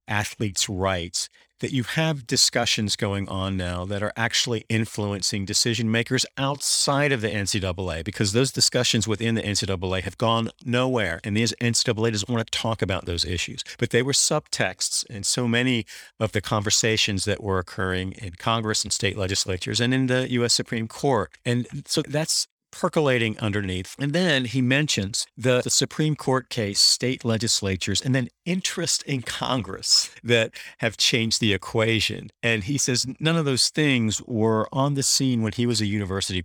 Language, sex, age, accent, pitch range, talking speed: English, male, 50-69, American, 100-130 Hz, 170 wpm